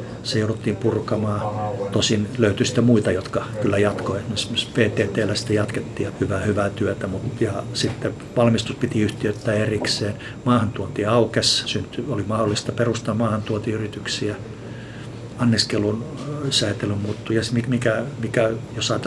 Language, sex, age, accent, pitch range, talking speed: Finnish, male, 50-69, native, 105-120 Hz, 110 wpm